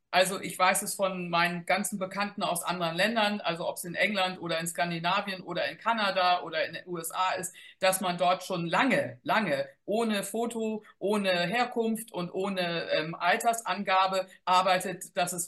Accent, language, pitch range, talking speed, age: German, German, 185-220 Hz, 170 wpm, 50-69